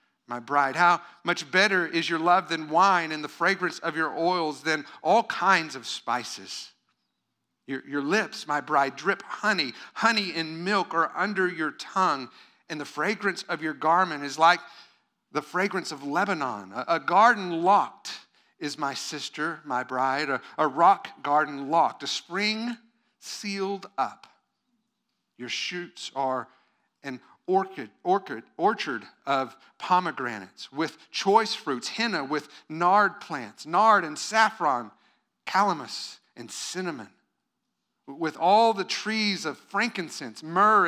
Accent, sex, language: American, male, English